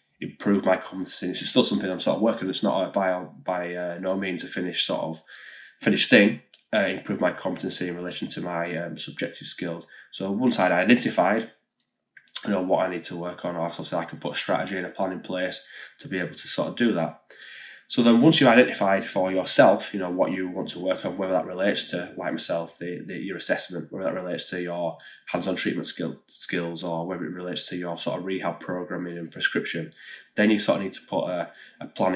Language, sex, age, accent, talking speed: English, male, 10-29, British, 230 wpm